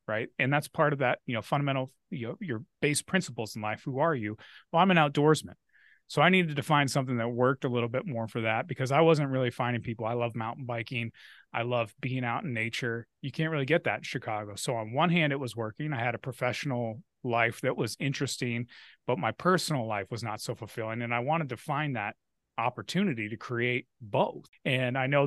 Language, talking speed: English, 230 wpm